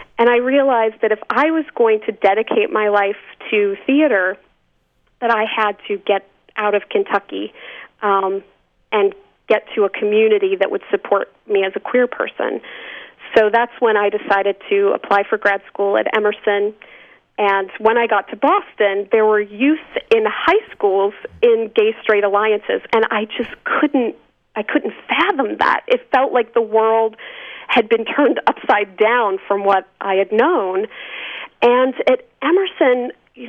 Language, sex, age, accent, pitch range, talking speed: English, female, 40-59, American, 210-275 Hz, 160 wpm